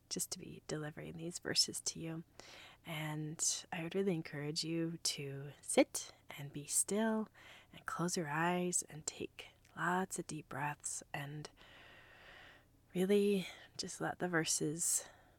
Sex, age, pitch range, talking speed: female, 30-49, 145-170 Hz, 135 wpm